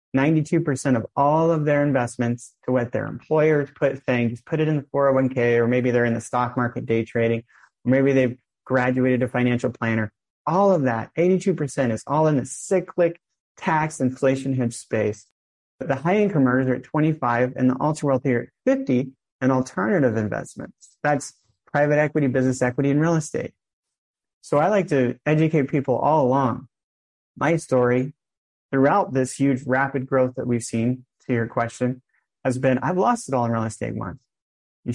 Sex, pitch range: male, 120-140 Hz